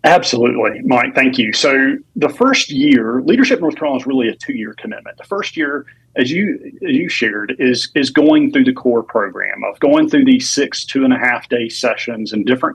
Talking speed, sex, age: 190 wpm, male, 40-59